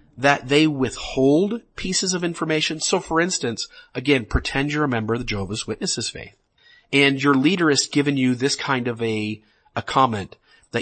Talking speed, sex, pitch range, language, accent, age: 175 wpm, male, 125-160 Hz, English, American, 40-59